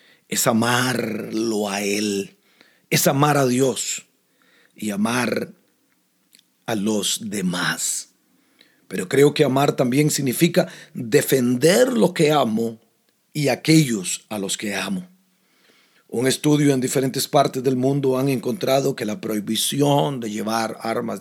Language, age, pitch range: Spanish, 40-59, 120-150 Hz